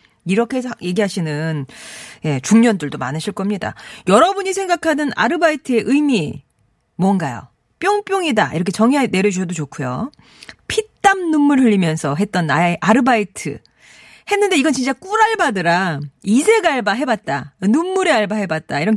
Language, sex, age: Korean, female, 40-59